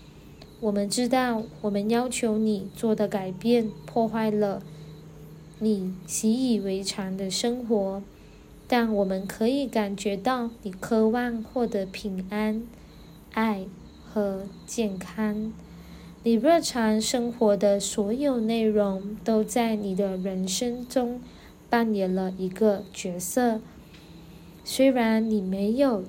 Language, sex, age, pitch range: Chinese, female, 20-39, 195-235 Hz